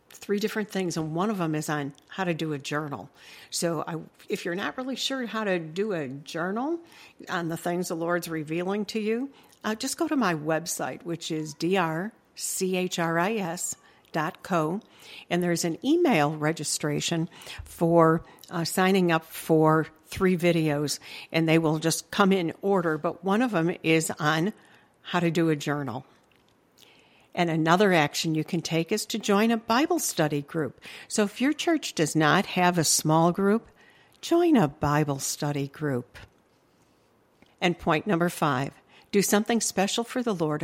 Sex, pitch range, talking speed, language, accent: female, 155-205 Hz, 160 wpm, English, American